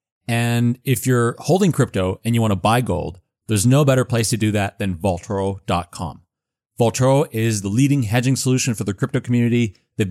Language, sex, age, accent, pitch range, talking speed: English, male, 30-49, American, 110-140 Hz, 185 wpm